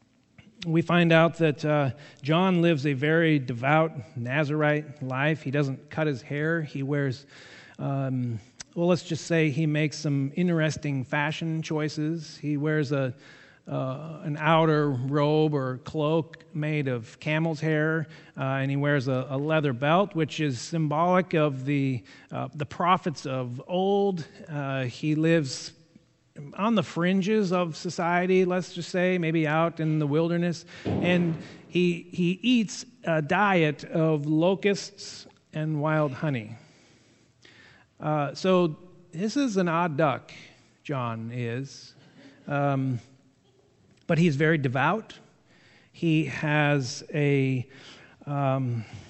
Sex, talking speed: male, 130 wpm